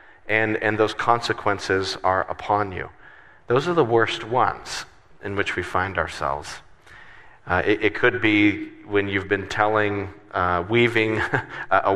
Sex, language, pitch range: male, English, 95-105 Hz